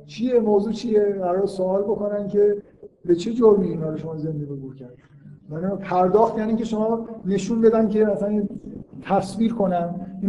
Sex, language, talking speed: male, Persian, 155 wpm